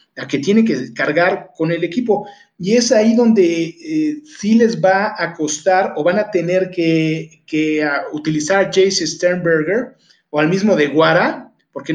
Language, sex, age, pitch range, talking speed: Spanish, male, 40-59, 155-195 Hz, 170 wpm